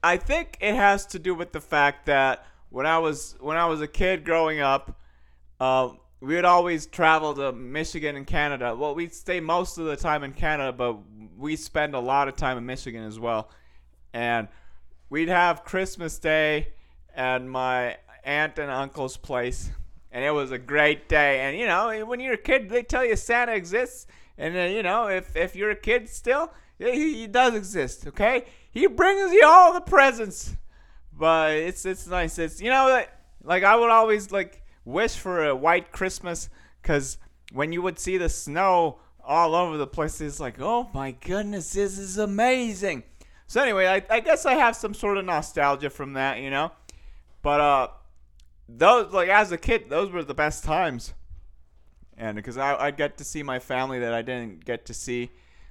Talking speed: 190 wpm